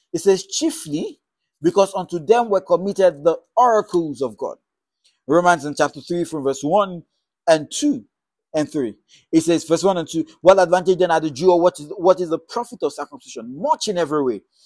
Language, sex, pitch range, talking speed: English, male, 165-250 Hz, 195 wpm